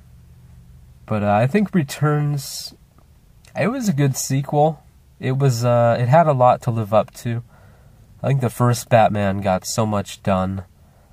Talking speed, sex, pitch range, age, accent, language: 160 wpm, male, 95-120 Hz, 20-39, American, English